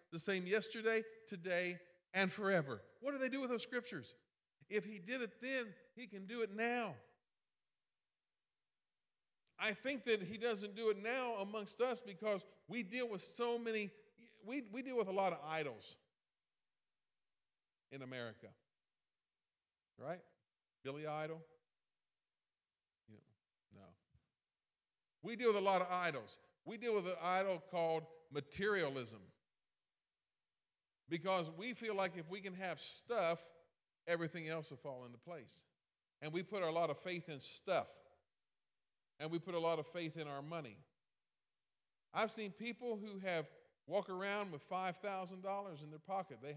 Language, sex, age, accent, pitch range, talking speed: English, male, 50-69, American, 160-215 Hz, 145 wpm